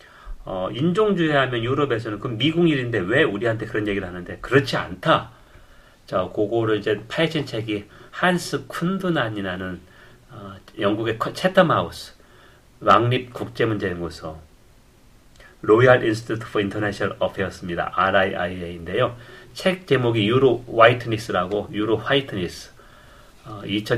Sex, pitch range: male, 105-145 Hz